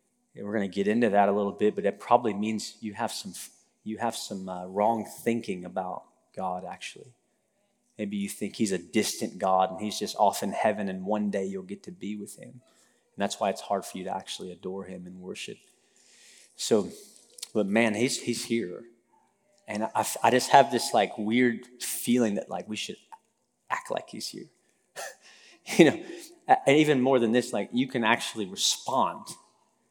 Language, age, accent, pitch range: English, 30-49, American, 105-125 Hz